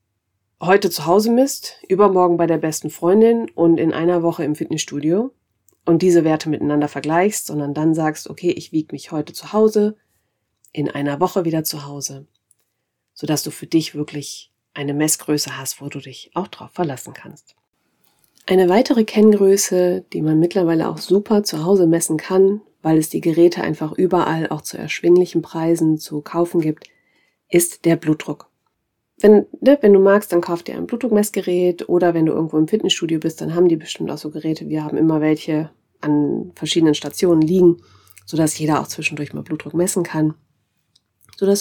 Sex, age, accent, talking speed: female, 40-59, German, 175 wpm